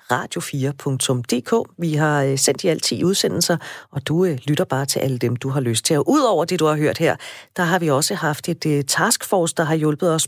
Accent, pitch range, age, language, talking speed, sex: native, 140-185 Hz, 40-59, Danish, 220 wpm, female